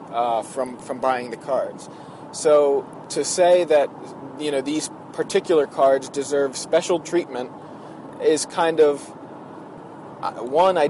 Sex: male